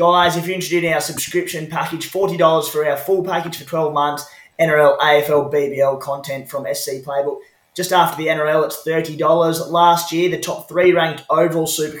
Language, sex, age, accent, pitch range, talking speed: English, male, 20-39, Australian, 135-170 Hz, 185 wpm